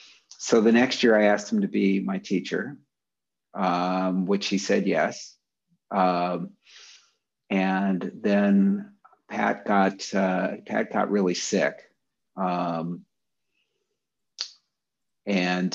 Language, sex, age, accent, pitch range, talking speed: English, male, 50-69, American, 90-105 Hz, 105 wpm